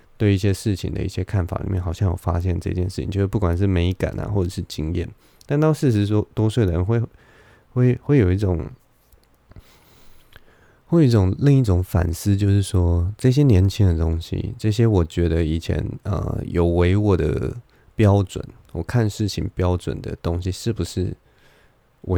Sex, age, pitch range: male, 20-39, 90-110 Hz